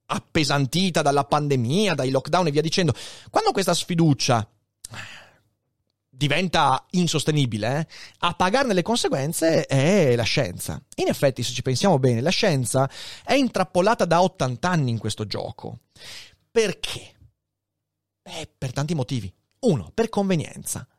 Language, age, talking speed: Italian, 30-49, 130 wpm